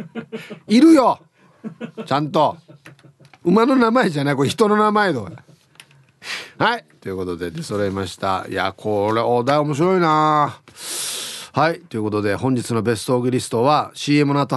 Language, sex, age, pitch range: Japanese, male, 40-59, 120-175 Hz